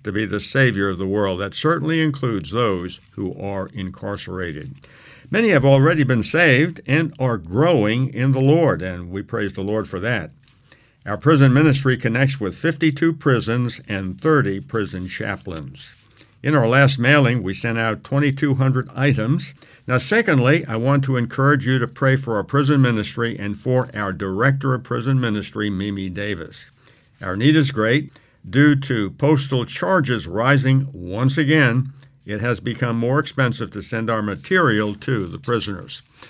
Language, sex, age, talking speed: English, male, 60-79, 160 wpm